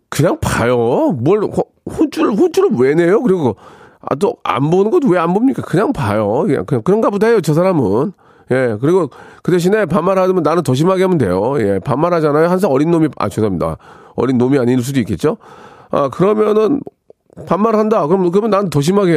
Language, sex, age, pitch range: Korean, male, 40-59, 150-210 Hz